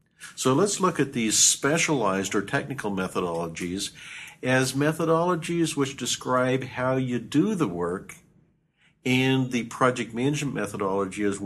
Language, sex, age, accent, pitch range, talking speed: English, male, 50-69, American, 100-135 Hz, 125 wpm